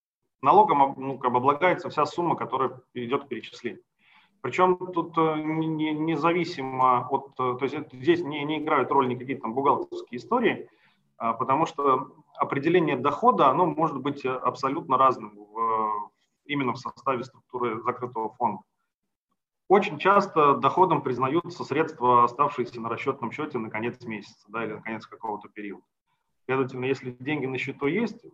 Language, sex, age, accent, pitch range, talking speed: Russian, male, 30-49, native, 125-160 Hz, 135 wpm